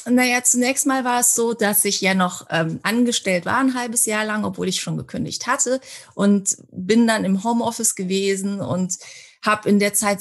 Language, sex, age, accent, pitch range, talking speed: German, female, 30-49, German, 185-230 Hz, 195 wpm